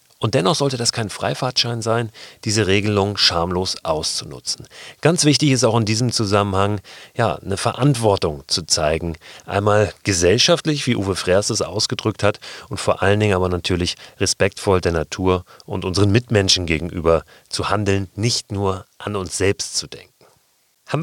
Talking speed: 155 wpm